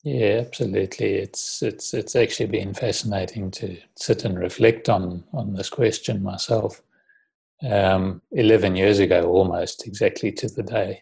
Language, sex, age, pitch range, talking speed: English, male, 30-49, 90-110 Hz, 140 wpm